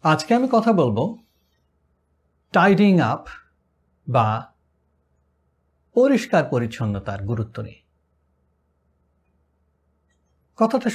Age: 60-79